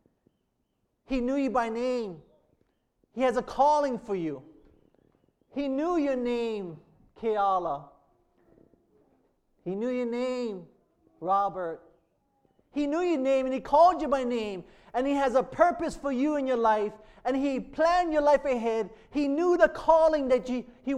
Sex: male